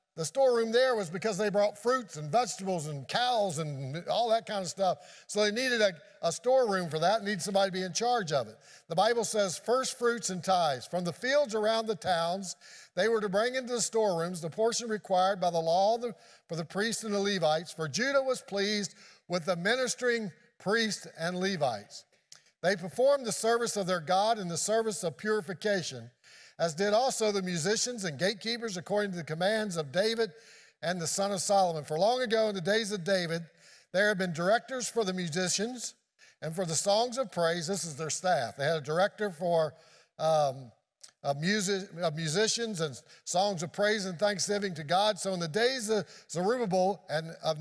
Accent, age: American, 50-69